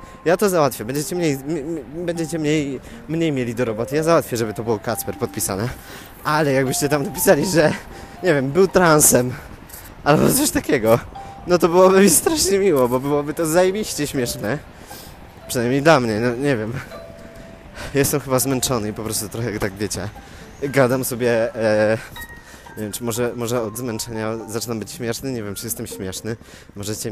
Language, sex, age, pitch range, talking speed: Polish, male, 20-39, 105-135 Hz, 175 wpm